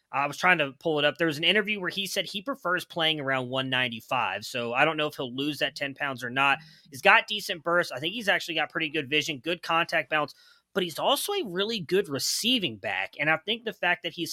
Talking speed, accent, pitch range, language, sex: 255 wpm, American, 140-170 Hz, English, male